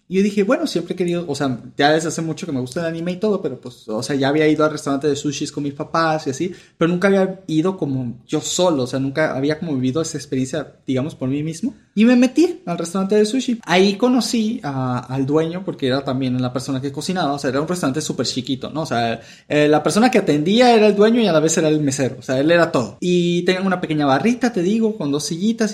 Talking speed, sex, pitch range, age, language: 265 wpm, male, 140-215 Hz, 30-49, Spanish